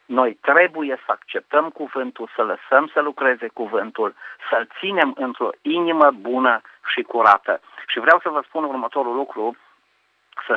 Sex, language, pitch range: male, Romanian, 115-145 Hz